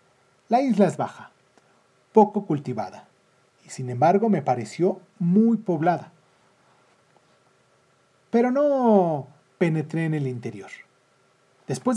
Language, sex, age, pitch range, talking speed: Spanish, male, 40-59, 135-195 Hz, 100 wpm